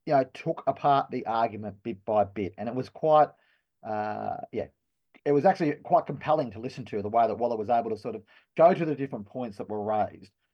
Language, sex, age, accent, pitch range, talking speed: English, male, 30-49, Australian, 115-150 Hz, 230 wpm